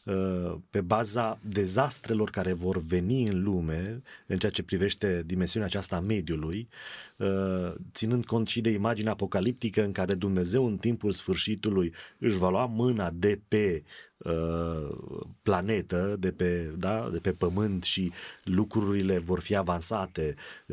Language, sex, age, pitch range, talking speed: Romanian, male, 30-49, 90-110 Hz, 125 wpm